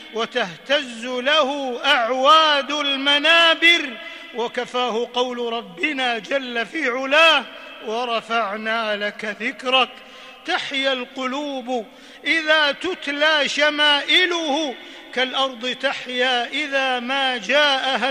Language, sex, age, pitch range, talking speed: Arabic, male, 50-69, 255-310 Hz, 75 wpm